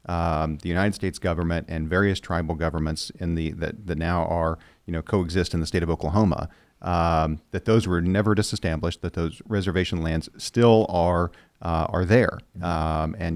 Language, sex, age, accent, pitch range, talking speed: English, male, 40-59, American, 85-105 Hz, 180 wpm